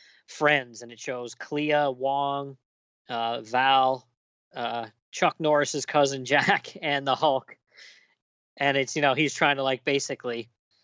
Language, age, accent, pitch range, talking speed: English, 20-39, American, 120-145 Hz, 140 wpm